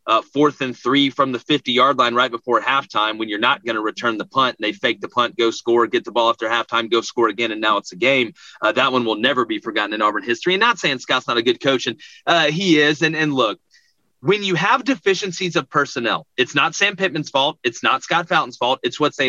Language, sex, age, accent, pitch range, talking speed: English, male, 30-49, American, 130-185 Hz, 260 wpm